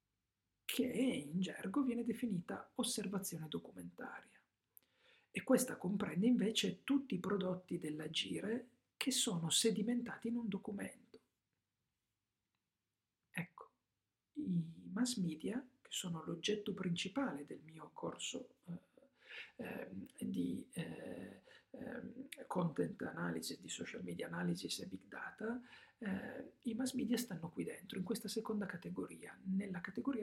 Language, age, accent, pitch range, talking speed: Italian, 50-69, native, 175-240 Hz, 115 wpm